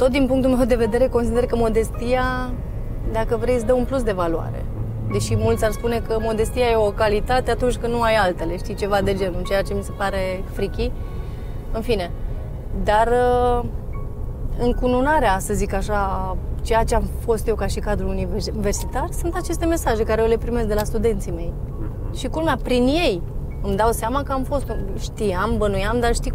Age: 30-49